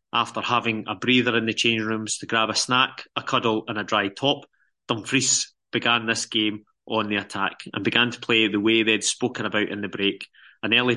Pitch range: 110-125 Hz